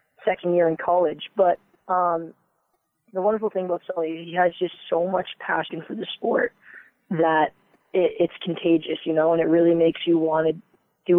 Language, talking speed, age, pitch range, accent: English, 180 wpm, 20-39, 160-175 Hz, American